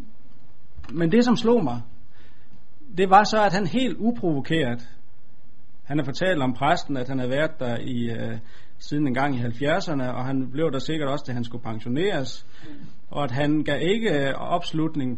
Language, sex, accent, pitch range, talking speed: Danish, male, native, 120-165 Hz, 180 wpm